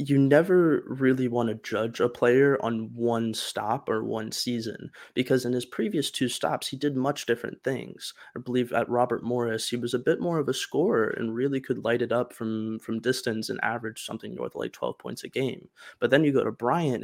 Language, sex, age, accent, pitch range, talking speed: English, male, 20-39, American, 110-125 Hz, 220 wpm